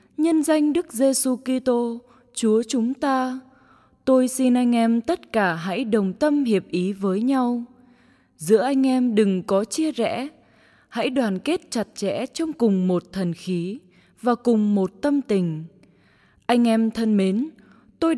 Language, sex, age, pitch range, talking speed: English, female, 20-39, 210-270 Hz, 160 wpm